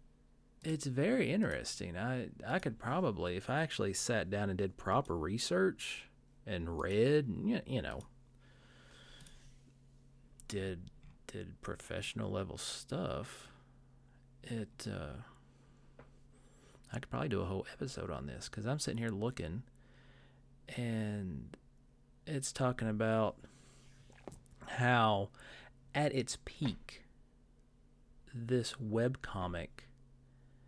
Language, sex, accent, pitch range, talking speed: English, male, American, 110-130 Hz, 105 wpm